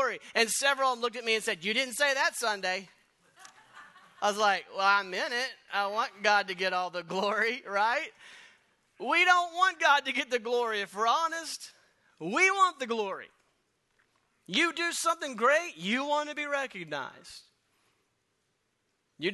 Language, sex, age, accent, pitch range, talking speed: English, male, 40-59, American, 175-240 Hz, 170 wpm